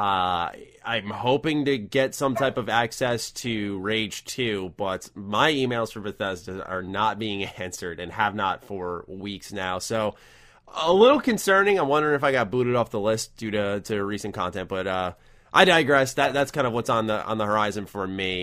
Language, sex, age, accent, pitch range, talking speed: English, male, 20-39, American, 100-130 Hz, 200 wpm